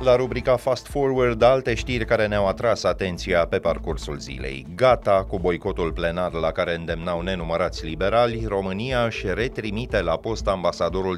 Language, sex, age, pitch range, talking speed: Romanian, male, 30-49, 85-110 Hz, 150 wpm